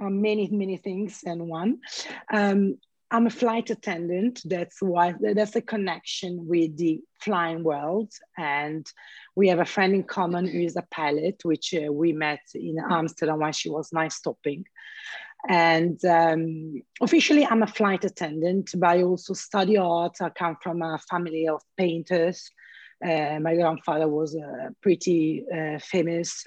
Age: 30-49